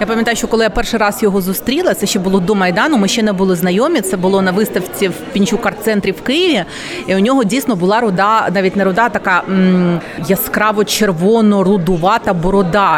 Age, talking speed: 30-49, 185 wpm